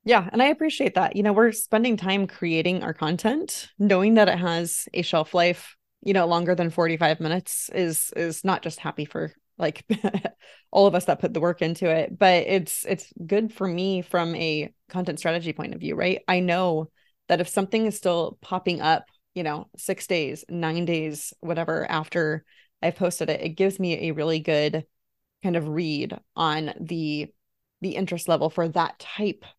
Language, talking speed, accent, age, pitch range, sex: English, 190 wpm, American, 20-39, 160-190 Hz, female